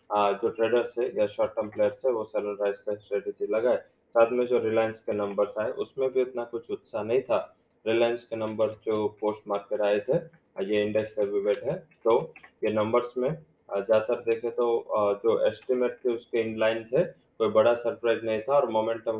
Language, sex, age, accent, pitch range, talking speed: English, male, 20-39, Indian, 105-120 Hz, 180 wpm